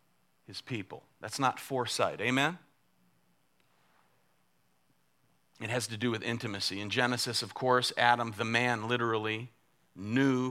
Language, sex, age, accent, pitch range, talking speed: English, male, 40-59, American, 100-120 Hz, 120 wpm